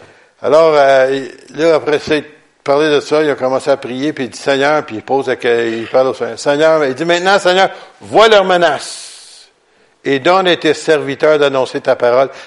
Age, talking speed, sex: 60-79, 190 wpm, male